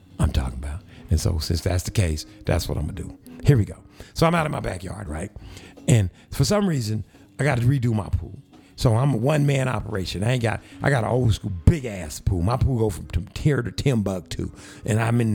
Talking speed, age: 225 wpm, 60-79